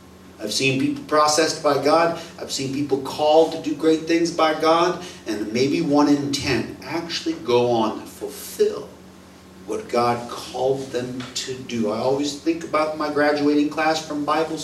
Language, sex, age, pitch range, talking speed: English, male, 40-59, 125-155 Hz, 170 wpm